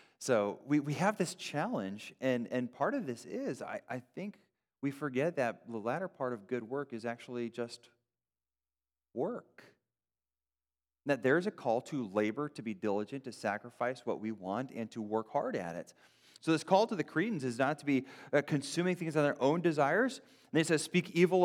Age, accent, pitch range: 30-49, American, 105-160 Hz